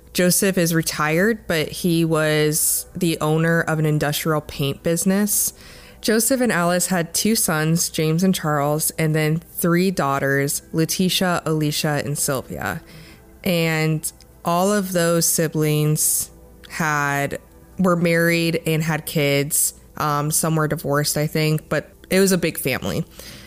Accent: American